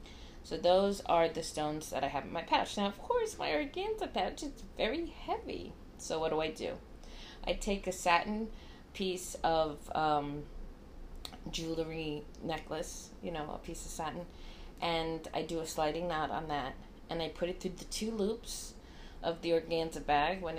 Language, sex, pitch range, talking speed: English, female, 155-185 Hz, 180 wpm